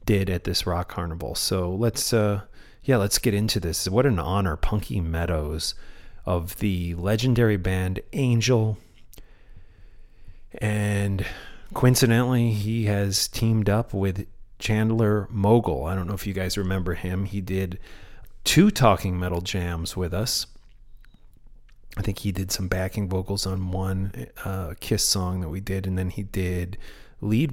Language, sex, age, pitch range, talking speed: English, male, 30-49, 90-110 Hz, 150 wpm